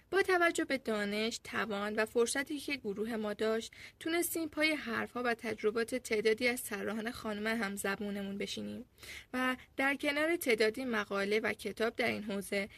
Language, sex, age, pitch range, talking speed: Persian, female, 10-29, 205-275 Hz, 155 wpm